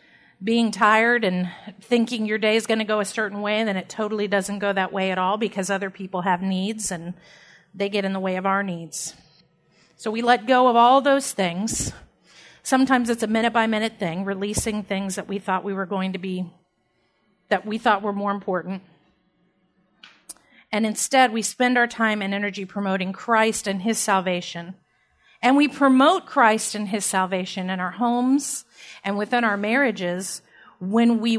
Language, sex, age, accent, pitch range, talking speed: English, female, 40-59, American, 190-235 Hz, 180 wpm